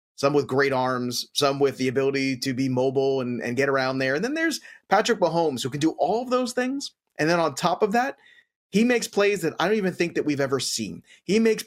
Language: English